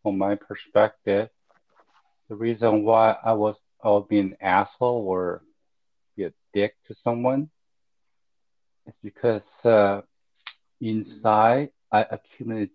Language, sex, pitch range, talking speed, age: English, male, 100-115 Hz, 115 wpm, 50-69